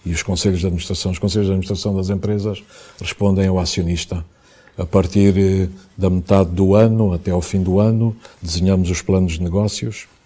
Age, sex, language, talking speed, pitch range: 50-69, male, Portuguese, 180 wpm, 95-105 Hz